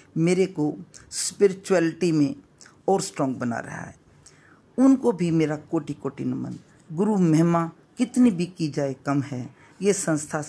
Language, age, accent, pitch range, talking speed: Hindi, 50-69, native, 145-190 Hz, 145 wpm